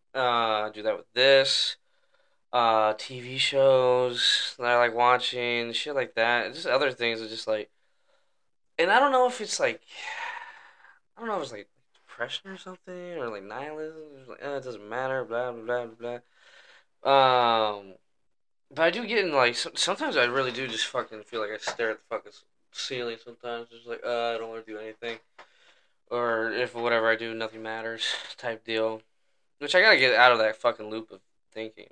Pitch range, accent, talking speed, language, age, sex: 110-140 Hz, American, 190 wpm, English, 10-29, male